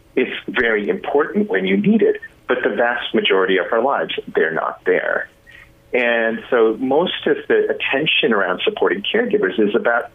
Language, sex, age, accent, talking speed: English, male, 40-59, American, 165 wpm